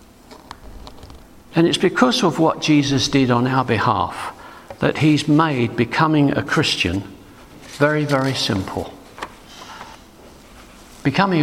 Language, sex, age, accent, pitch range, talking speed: English, male, 50-69, British, 105-150 Hz, 105 wpm